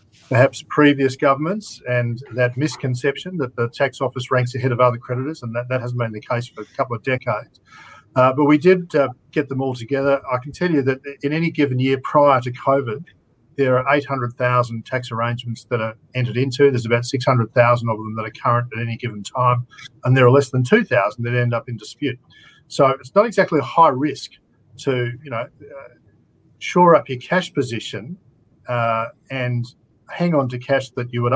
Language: English